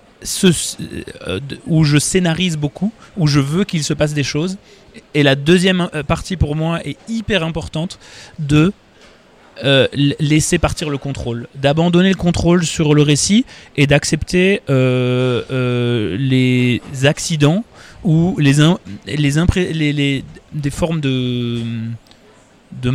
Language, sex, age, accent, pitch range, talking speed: French, male, 30-49, French, 130-165 Hz, 140 wpm